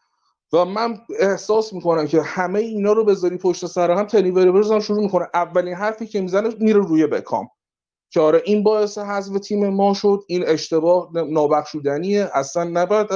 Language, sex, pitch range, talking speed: Persian, male, 150-205 Hz, 170 wpm